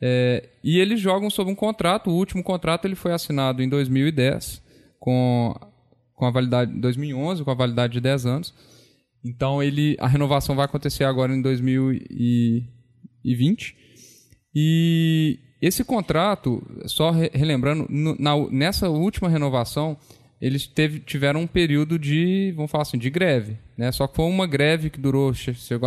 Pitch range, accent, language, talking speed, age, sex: 130-175 Hz, Brazilian, Portuguese, 150 wpm, 10-29, male